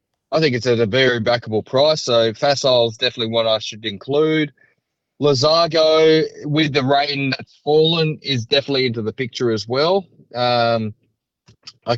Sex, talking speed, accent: male, 155 wpm, Australian